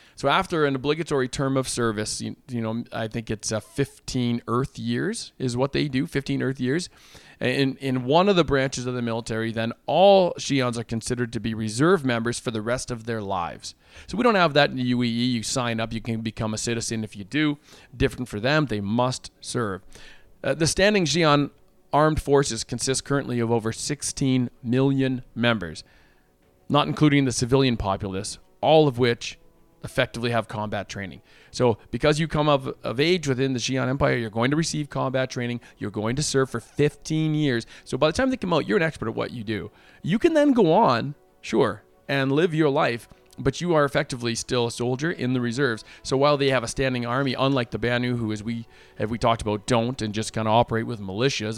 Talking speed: 215 wpm